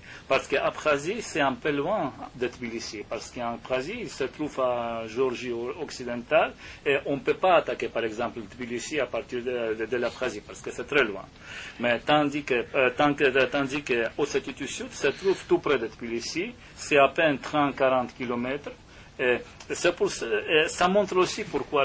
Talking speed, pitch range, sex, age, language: 180 wpm, 120-155 Hz, male, 40-59, French